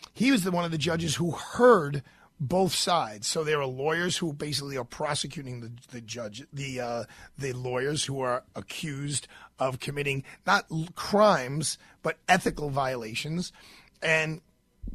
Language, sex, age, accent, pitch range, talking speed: English, male, 40-59, American, 135-165 Hz, 150 wpm